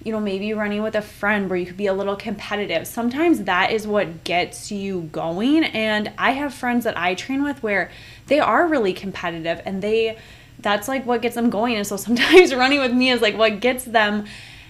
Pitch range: 185-235 Hz